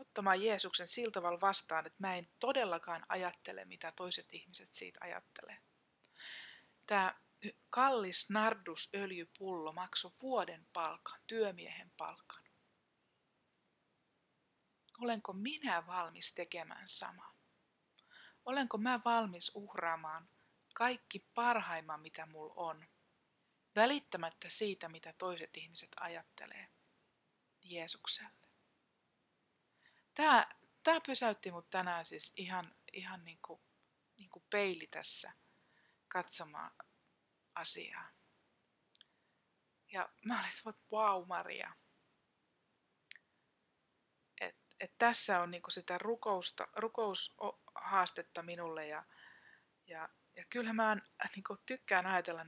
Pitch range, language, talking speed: 165-220 Hz, Finnish, 95 wpm